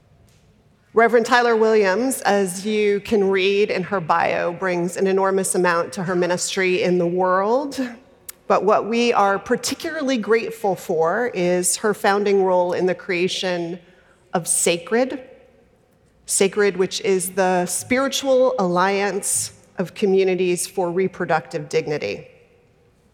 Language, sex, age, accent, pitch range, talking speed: English, female, 40-59, American, 180-215 Hz, 120 wpm